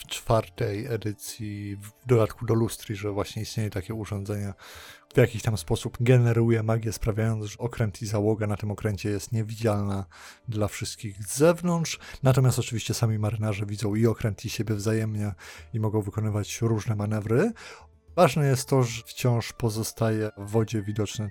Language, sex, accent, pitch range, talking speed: Polish, male, native, 105-125 Hz, 160 wpm